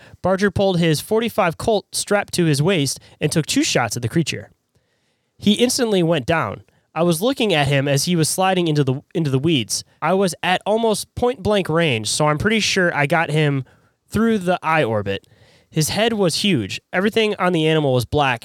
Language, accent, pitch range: English, American, 140-190 Hz